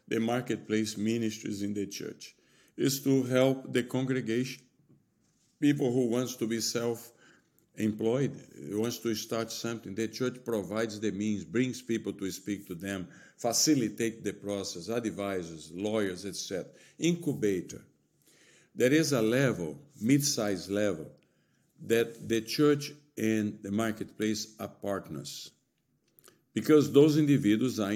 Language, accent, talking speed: English, Brazilian, 120 wpm